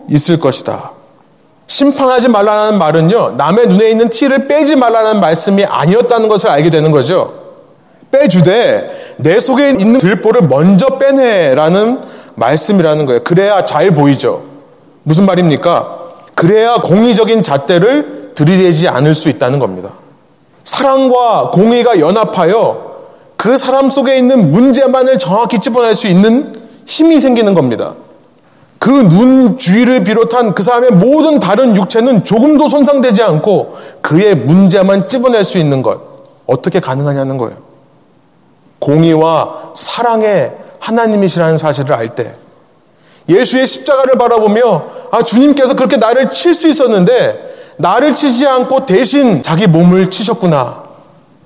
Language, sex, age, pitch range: Korean, male, 30-49, 180-260 Hz